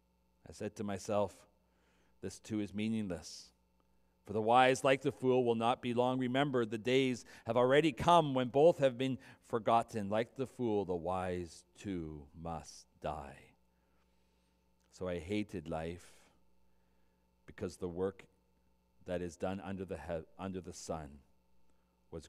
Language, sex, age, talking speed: English, male, 40-59, 145 wpm